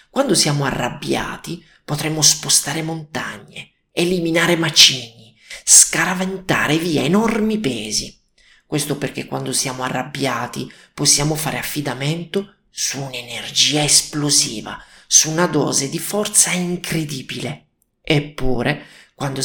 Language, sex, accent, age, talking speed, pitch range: Italian, male, native, 30-49, 95 wpm, 135-170 Hz